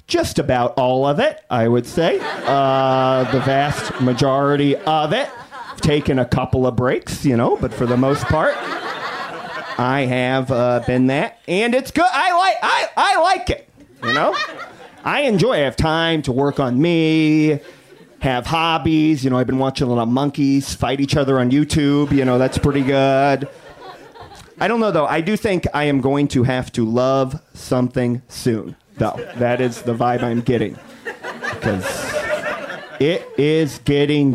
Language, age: English, 30-49